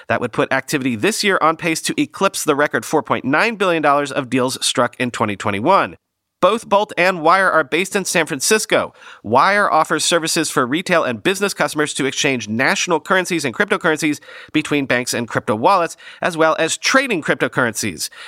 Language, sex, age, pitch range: English, male, 40-59, 120-170 Hz